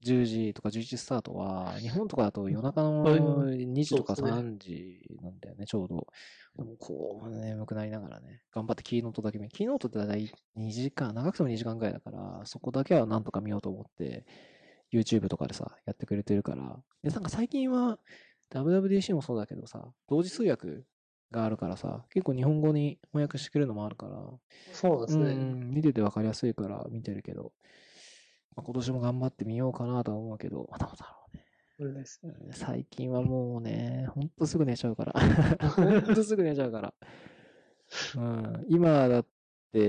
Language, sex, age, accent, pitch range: Japanese, male, 20-39, native, 110-150 Hz